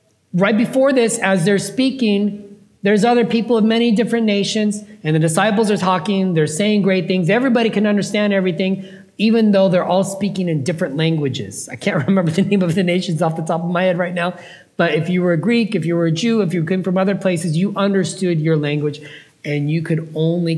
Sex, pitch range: male, 130-190 Hz